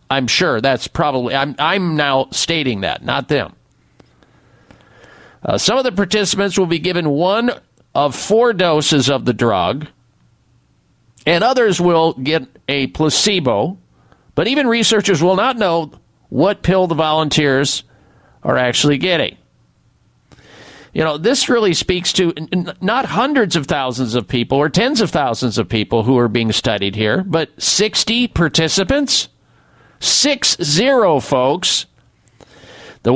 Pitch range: 140-190 Hz